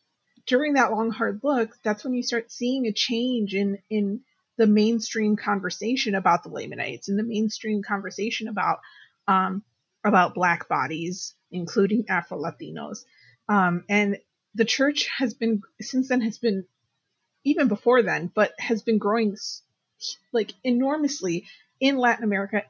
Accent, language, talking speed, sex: American, English, 140 wpm, female